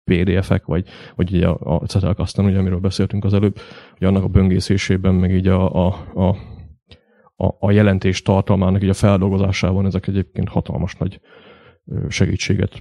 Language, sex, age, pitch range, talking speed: Hungarian, male, 30-49, 90-100 Hz, 145 wpm